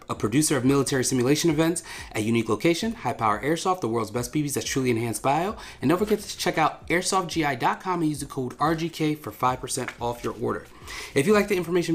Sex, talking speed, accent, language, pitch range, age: male, 210 wpm, American, English, 120-165 Hz, 30-49